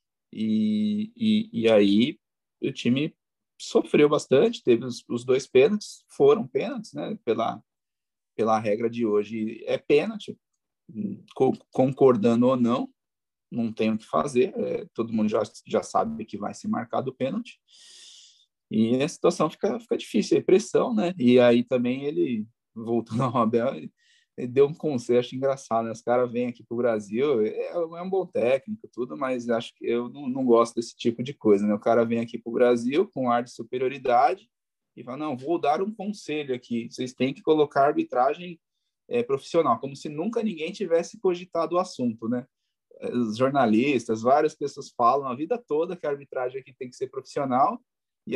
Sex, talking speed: male, 175 wpm